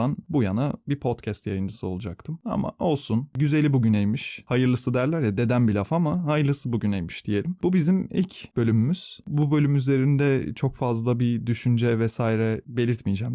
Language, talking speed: Turkish, 150 wpm